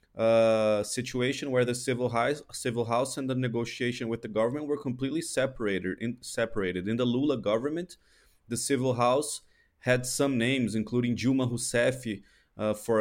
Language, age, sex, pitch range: English, 20-39, male, 115-130 Hz